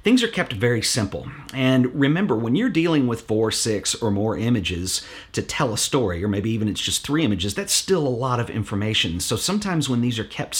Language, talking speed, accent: English, 220 wpm, American